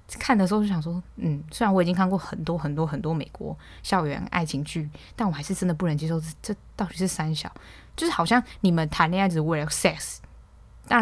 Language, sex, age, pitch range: Chinese, female, 10-29, 160-200 Hz